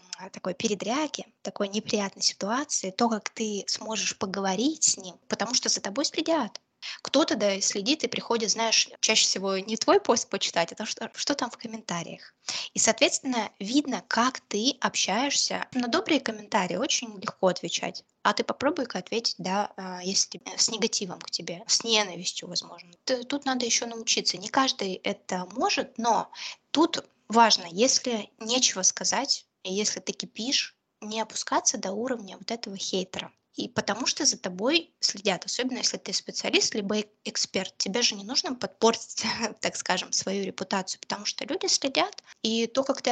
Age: 20-39